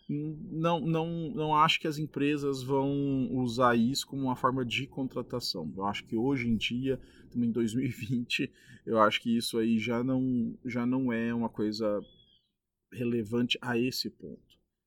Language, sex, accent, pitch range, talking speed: Portuguese, male, Brazilian, 115-145 Hz, 160 wpm